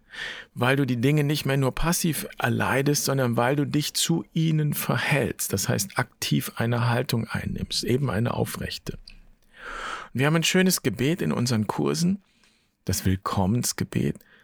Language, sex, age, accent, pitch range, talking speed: German, male, 50-69, German, 100-140 Hz, 145 wpm